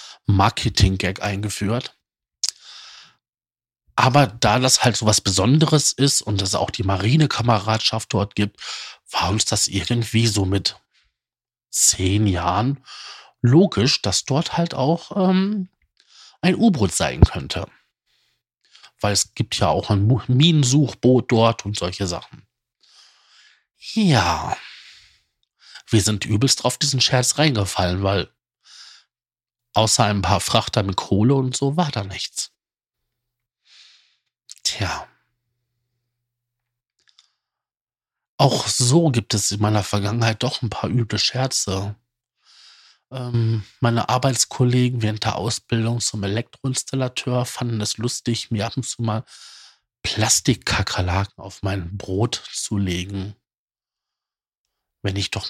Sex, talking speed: male, 110 wpm